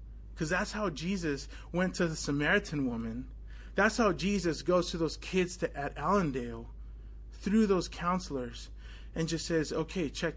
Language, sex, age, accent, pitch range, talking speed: English, male, 20-39, American, 125-160 Hz, 155 wpm